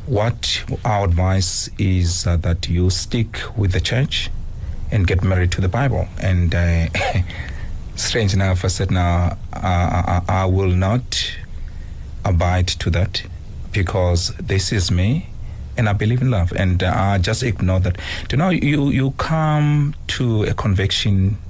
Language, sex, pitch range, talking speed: English, male, 90-105 Hz, 155 wpm